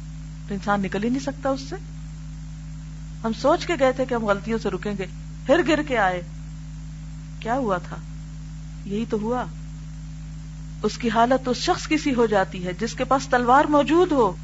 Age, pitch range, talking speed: 40-59, 155-225 Hz, 105 wpm